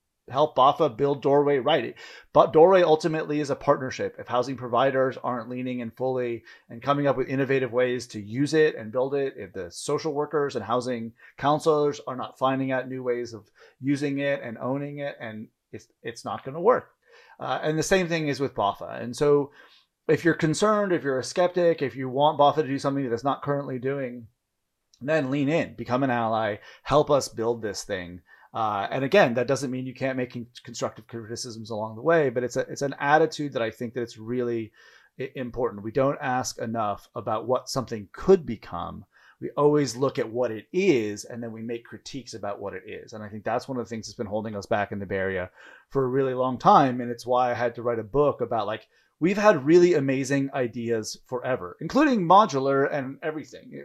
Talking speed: 210 wpm